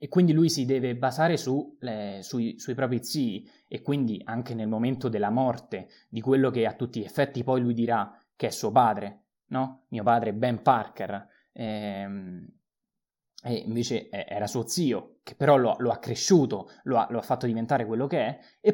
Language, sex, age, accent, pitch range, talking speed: Italian, male, 20-39, native, 115-145 Hz, 190 wpm